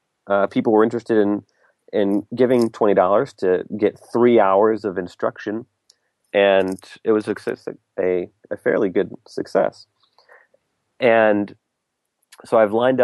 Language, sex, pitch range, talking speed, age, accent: English, male, 95-110 Hz, 130 wpm, 30-49, American